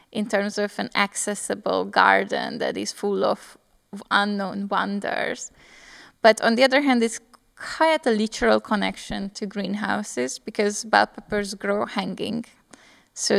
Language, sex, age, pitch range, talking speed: Slovak, female, 10-29, 200-225 Hz, 140 wpm